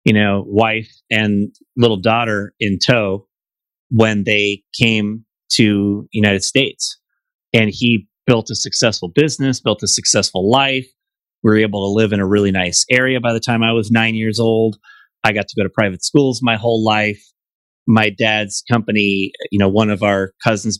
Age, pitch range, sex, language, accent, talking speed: 30-49, 105-120 Hz, male, English, American, 175 wpm